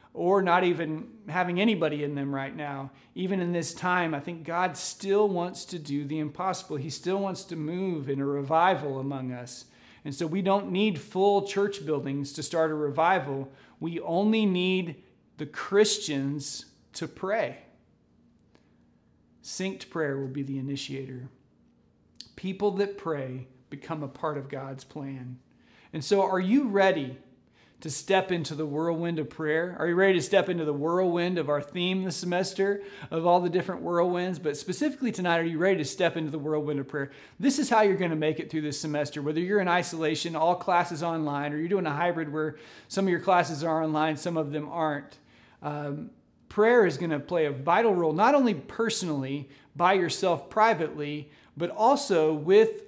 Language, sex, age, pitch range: English, male, 40-59, 145-185 Hz